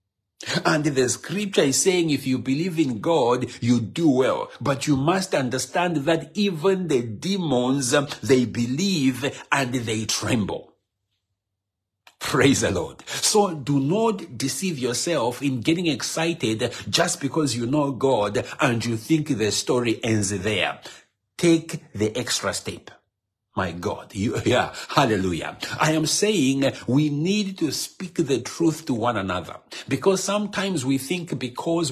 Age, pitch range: 60-79, 120-160 Hz